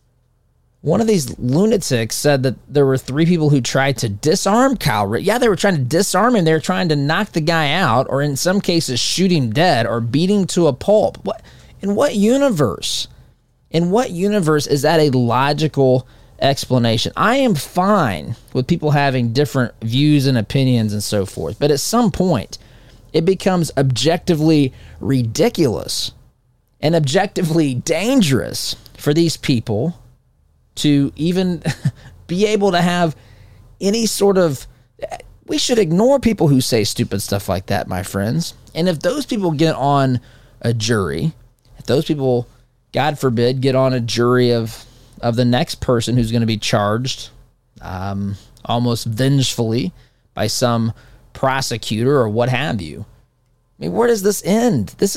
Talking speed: 160 wpm